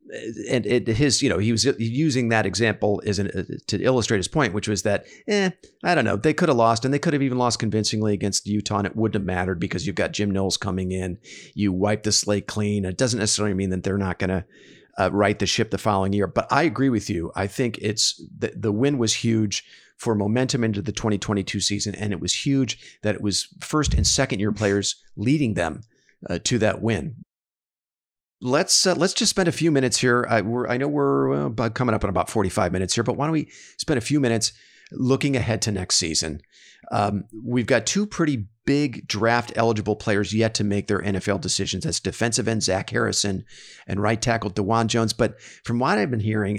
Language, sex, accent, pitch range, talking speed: English, male, American, 100-125 Hz, 225 wpm